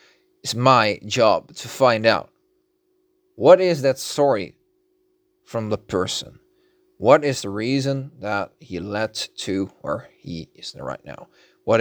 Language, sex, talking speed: English, male, 135 wpm